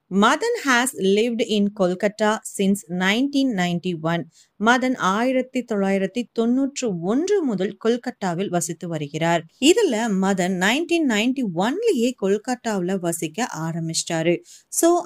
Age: 30-49